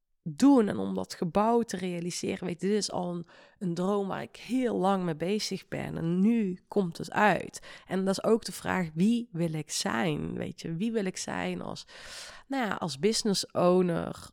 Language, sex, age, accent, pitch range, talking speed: Dutch, female, 30-49, Dutch, 165-205 Hz, 200 wpm